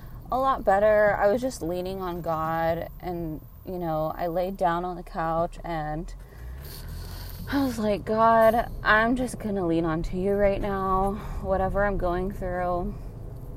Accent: American